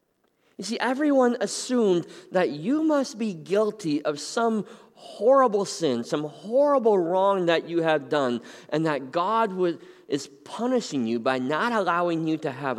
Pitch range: 120-190 Hz